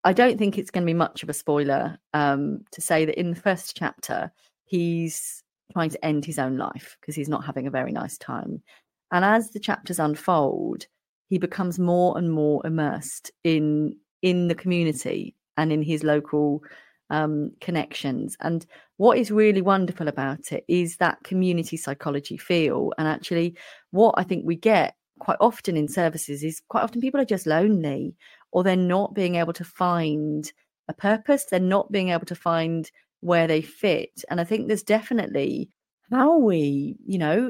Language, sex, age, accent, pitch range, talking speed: English, female, 30-49, British, 155-200 Hz, 180 wpm